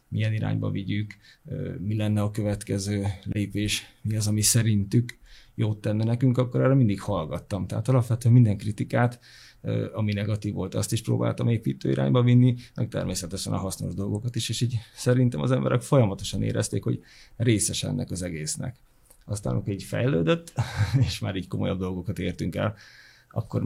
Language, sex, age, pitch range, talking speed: Hungarian, male, 30-49, 95-120 Hz, 155 wpm